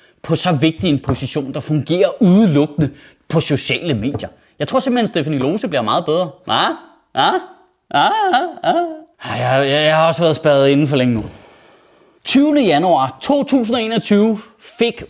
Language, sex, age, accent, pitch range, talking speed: Danish, male, 30-49, native, 165-255 Hz, 160 wpm